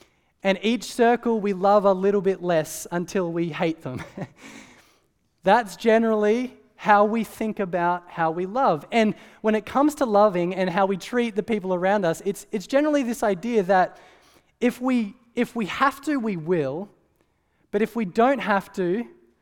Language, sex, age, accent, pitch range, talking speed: English, male, 20-39, Australian, 180-225 Hz, 175 wpm